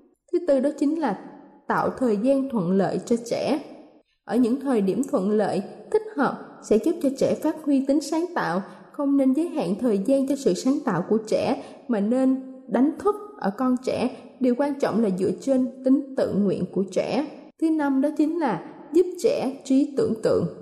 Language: Thai